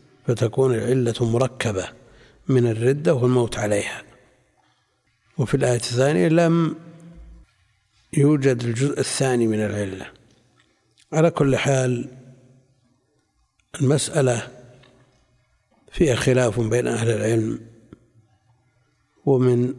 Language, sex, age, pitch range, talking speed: Arabic, male, 60-79, 120-150 Hz, 80 wpm